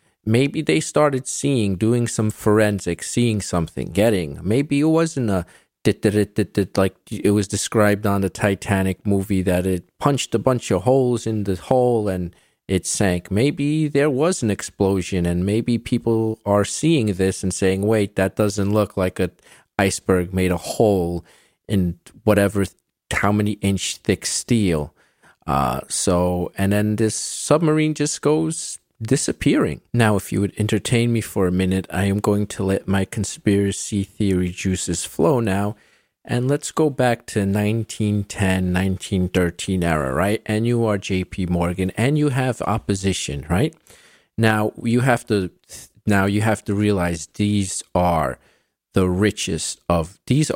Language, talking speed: English, 160 wpm